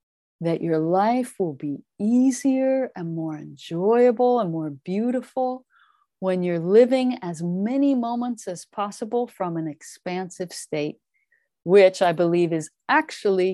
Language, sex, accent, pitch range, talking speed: English, female, American, 170-235 Hz, 130 wpm